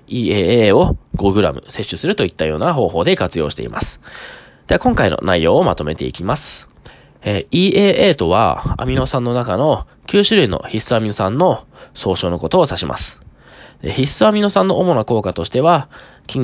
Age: 20-39